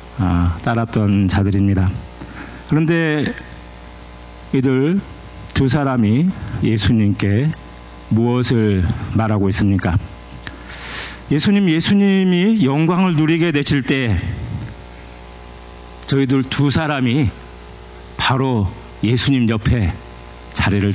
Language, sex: Korean, male